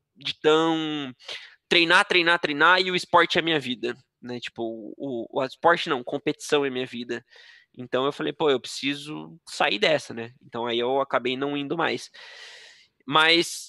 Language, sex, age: Portuguese, male, 20-39